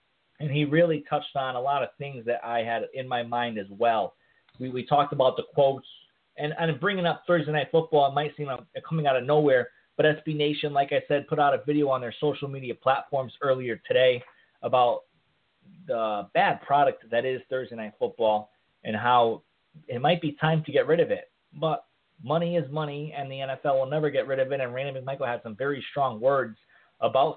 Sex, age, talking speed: male, 30-49, 215 wpm